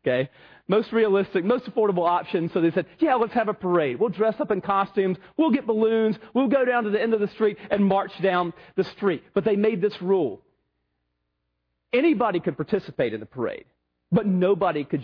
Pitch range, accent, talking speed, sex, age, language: 150-205 Hz, American, 200 wpm, male, 40-59, English